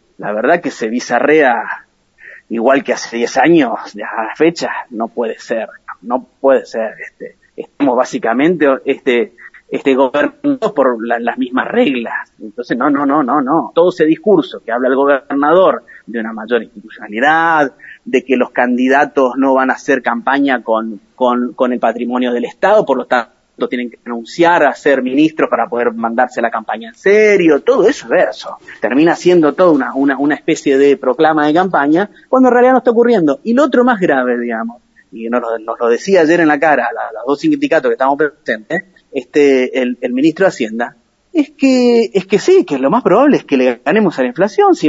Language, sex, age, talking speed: Spanish, male, 30-49, 195 wpm